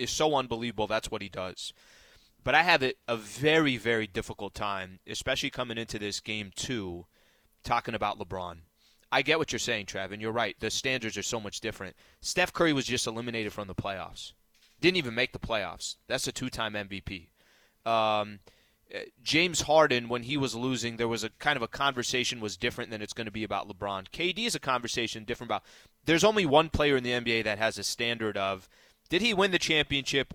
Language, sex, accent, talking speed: English, male, American, 200 wpm